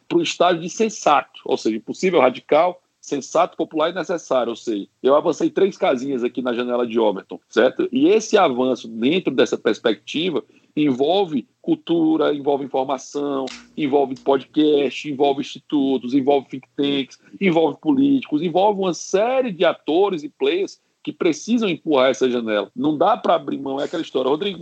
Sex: male